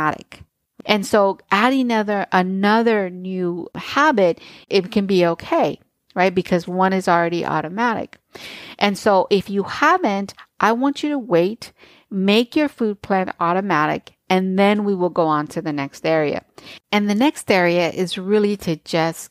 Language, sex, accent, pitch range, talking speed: English, female, American, 165-210 Hz, 150 wpm